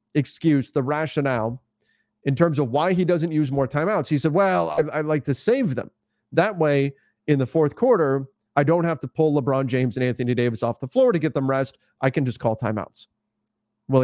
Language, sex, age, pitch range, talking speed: English, male, 30-49, 125-165 Hz, 210 wpm